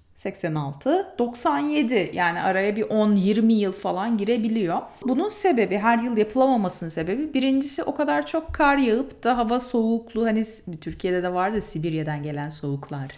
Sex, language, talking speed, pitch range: female, Turkish, 135 wpm, 165-255 Hz